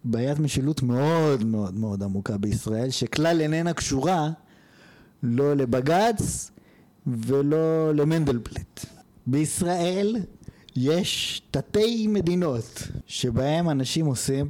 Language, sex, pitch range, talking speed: Hebrew, male, 125-170 Hz, 85 wpm